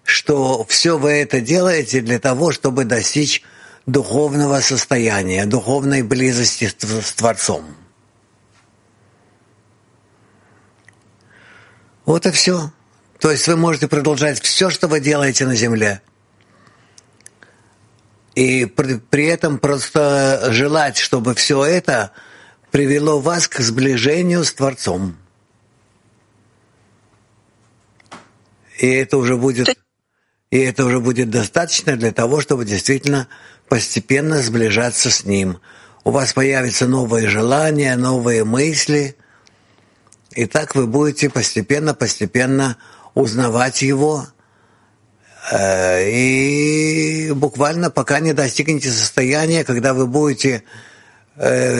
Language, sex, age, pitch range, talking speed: English, male, 50-69, 115-145 Hz, 95 wpm